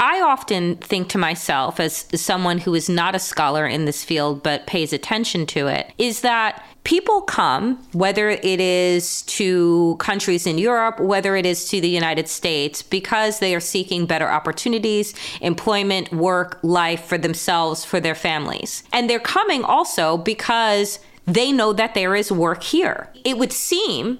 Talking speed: 165 wpm